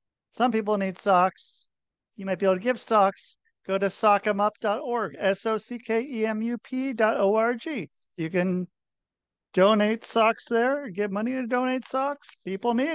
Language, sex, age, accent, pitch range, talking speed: English, male, 40-59, American, 190-245 Hz, 175 wpm